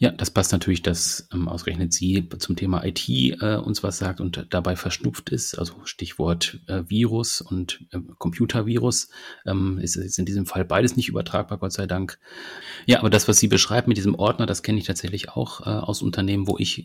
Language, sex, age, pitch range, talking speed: German, male, 30-49, 90-105 Hz, 205 wpm